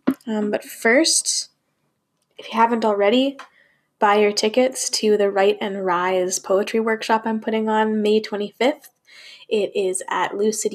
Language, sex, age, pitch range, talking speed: English, female, 10-29, 200-245 Hz, 145 wpm